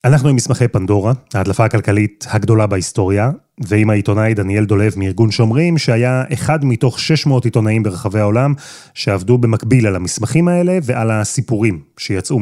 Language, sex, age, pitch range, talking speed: Hebrew, male, 30-49, 110-140 Hz, 140 wpm